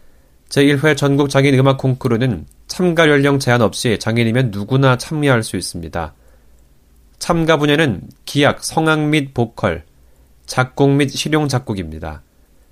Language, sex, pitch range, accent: Korean, male, 100-145 Hz, native